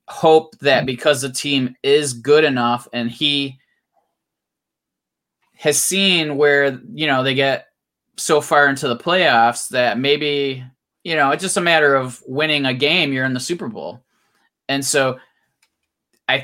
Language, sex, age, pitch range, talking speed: English, male, 20-39, 125-145 Hz, 155 wpm